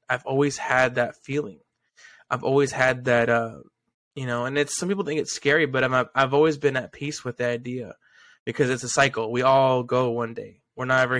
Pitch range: 125-140 Hz